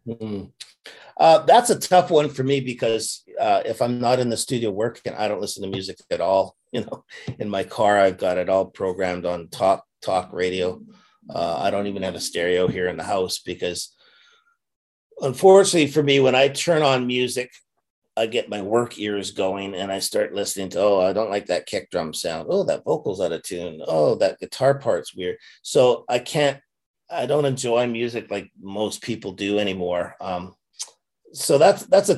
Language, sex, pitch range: English, male, 95-135 Hz